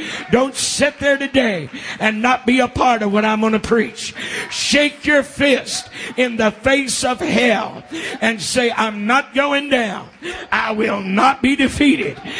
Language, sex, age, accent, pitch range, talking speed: English, male, 50-69, American, 220-290 Hz, 165 wpm